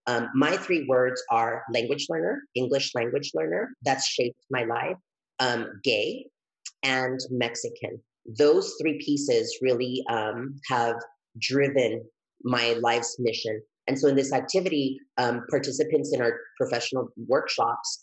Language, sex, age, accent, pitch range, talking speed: English, female, 30-49, American, 120-145 Hz, 130 wpm